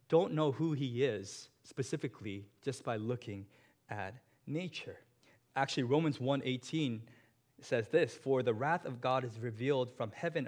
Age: 20-39